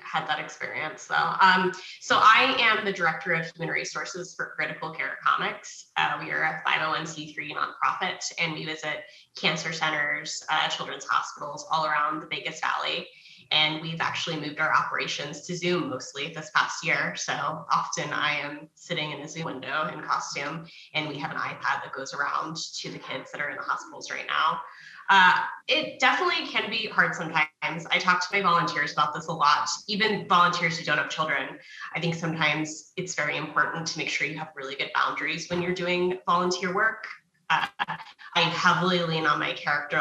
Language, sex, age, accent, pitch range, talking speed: English, female, 20-39, American, 150-180 Hz, 185 wpm